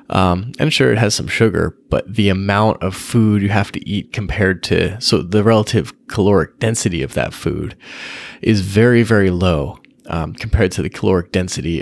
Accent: American